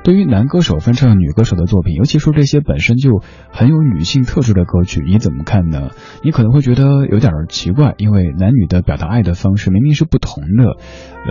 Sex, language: male, Chinese